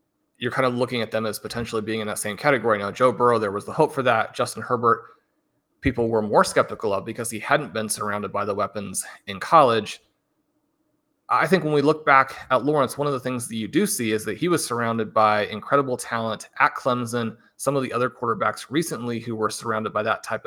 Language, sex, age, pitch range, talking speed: English, male, 30-49, 110-125 Hz, 225 wpm